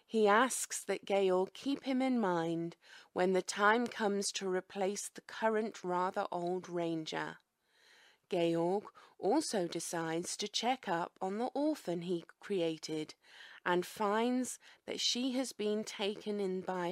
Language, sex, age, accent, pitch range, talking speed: English, female, 30-49, British, 175-245 Hz, 140 wpm